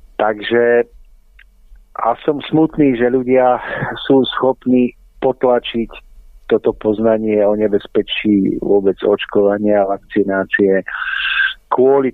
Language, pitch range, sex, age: Slovak, 100-120 Hz, male, 50-69